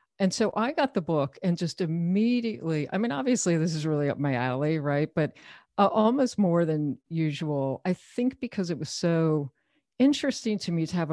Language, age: English, 50-69